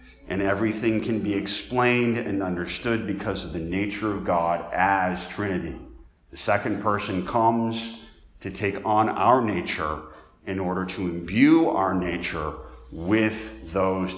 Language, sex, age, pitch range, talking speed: English, male, 50-69, 95-120 Hz, 135 wpm